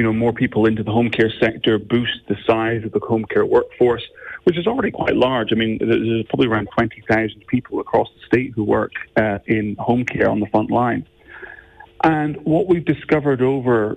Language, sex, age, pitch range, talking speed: English, male, 40-59, 110-135 Hz, 200 wpm